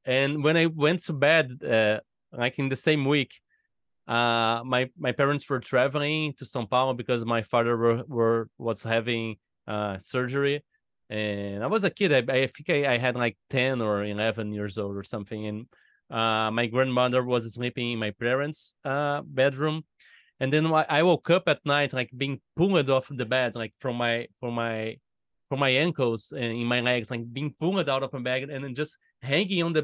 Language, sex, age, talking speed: English, male, 20-39, 195 wpm